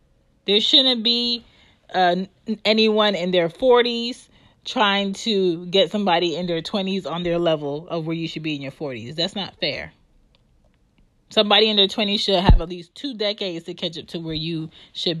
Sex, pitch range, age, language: female, 165-215 Hz, 30-49, English